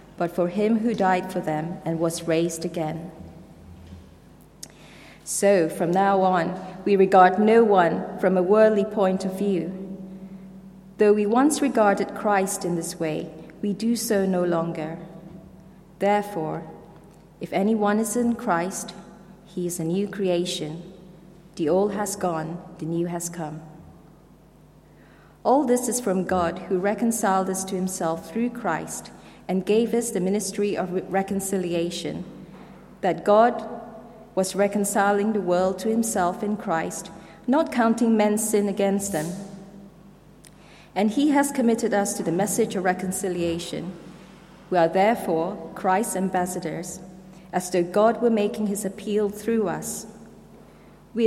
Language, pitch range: English, 175-210 Hz